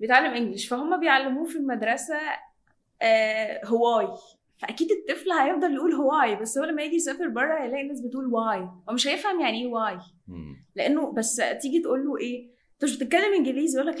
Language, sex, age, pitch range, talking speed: Arabic, female, 10-29, 215-270 Hz, 170 wpm